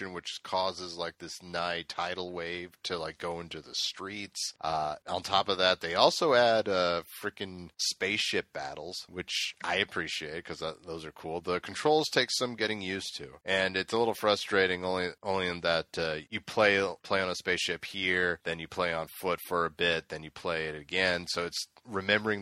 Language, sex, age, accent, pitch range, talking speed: English, male, 30-49, American, 80-95 Hz, 195 wpm